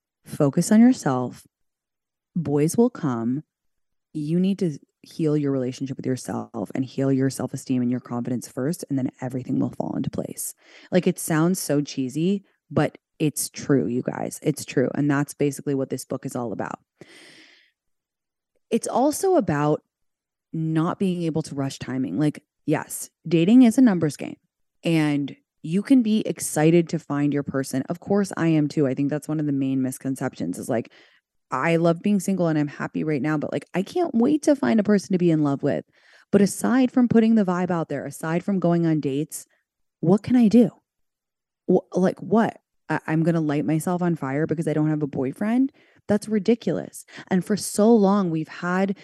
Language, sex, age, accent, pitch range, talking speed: English, female, 20-39, American, 140-185 Hz, 190 wpm